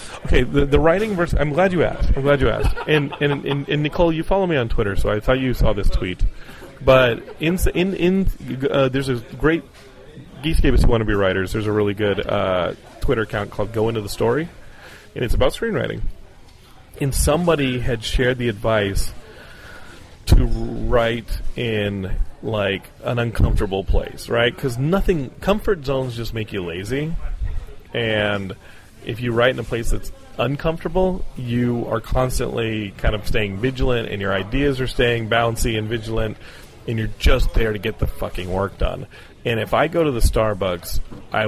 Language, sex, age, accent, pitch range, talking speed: English, male, 30-49, American, 110-150 Hz, 180 wpm